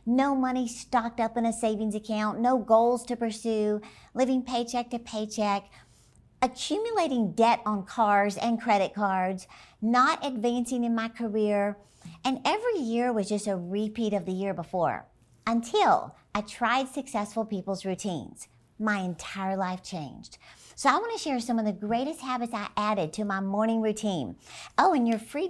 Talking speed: 160 wpm